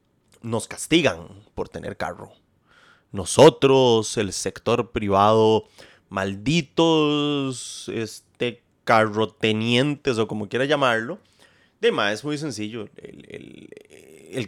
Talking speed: 100 wpm